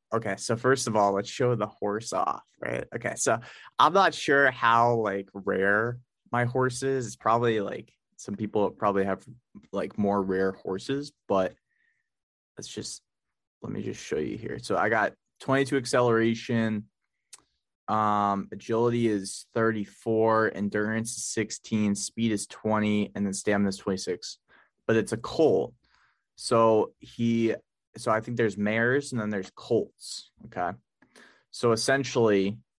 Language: English